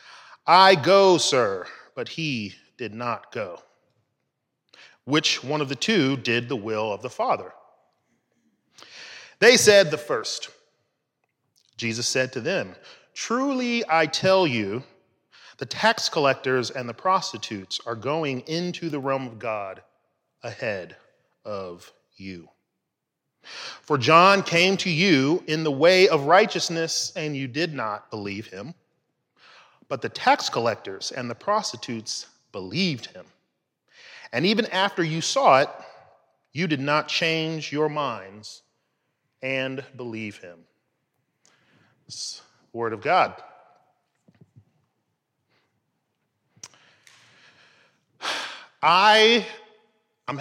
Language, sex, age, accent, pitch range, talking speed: English, male, 30-49, American, 120-180 Hz, 110 wpm